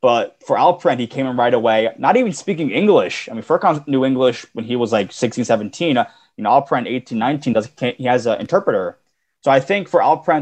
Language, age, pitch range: English, 20-39, 110-130 Hz